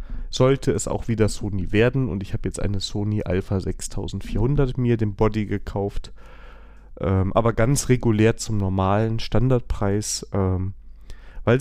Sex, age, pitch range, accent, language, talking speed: male, 30-49, 105-130 Hz, German, German, 140 wpm